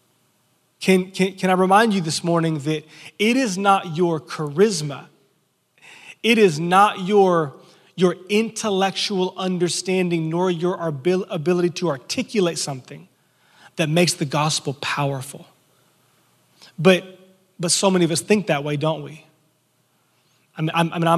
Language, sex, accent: English, male, American